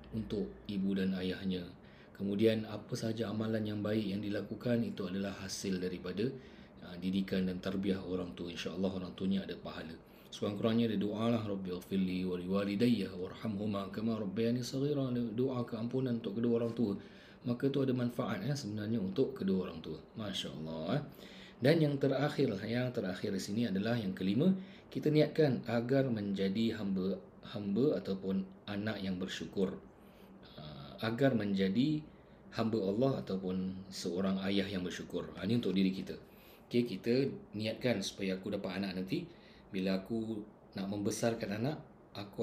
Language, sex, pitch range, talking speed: English, male, 95-115 Hz, 150 wpm